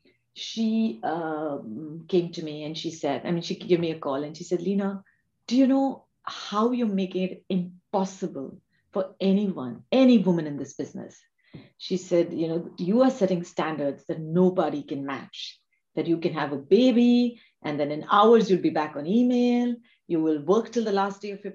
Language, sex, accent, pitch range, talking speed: English, female, Indian, 165-215 Hz, 195 wpm